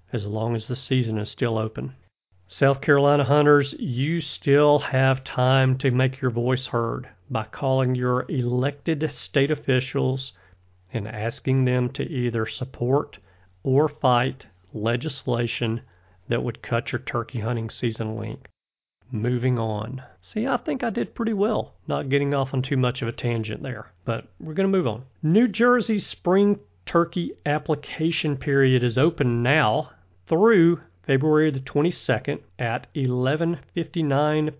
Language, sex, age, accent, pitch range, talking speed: English, male, 40-59, American, 120-155 Hz, 145 wpm